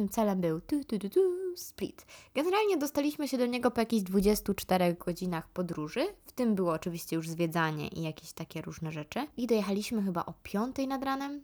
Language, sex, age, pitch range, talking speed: Polish, female, 20-39, 180-245 Hz, 190 wpm